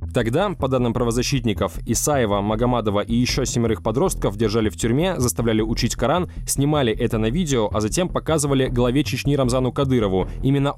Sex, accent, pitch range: male, native, 115-140 Hz